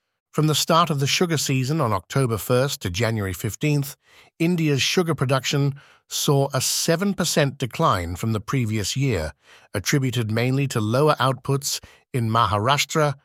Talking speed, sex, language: 140 wpm, male, English